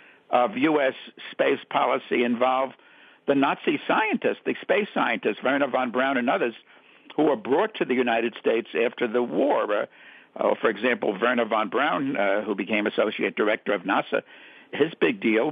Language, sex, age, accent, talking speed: English, male, 60-79, American, 165 wpm